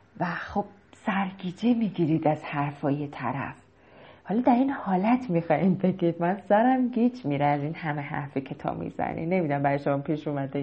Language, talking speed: Persian, 150 wpm